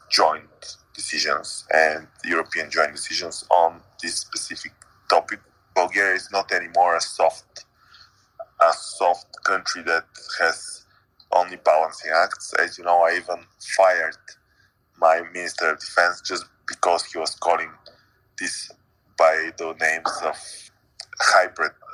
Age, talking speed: 20-39, 125 wpm